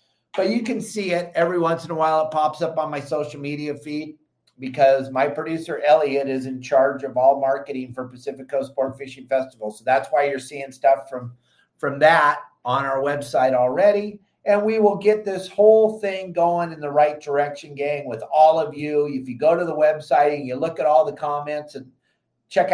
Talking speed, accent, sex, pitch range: 210 wpm, American, male, 130-160 Hz